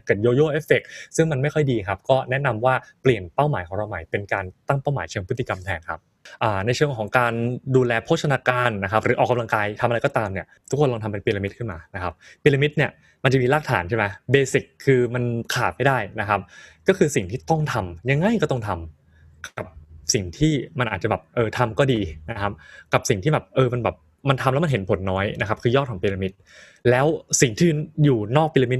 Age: 20-39